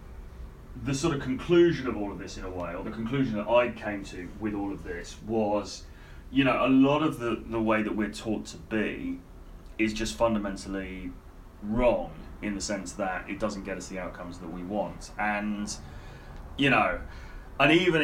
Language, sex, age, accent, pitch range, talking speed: English, male, 30-49, British, 90-115 Hz, 195 wpm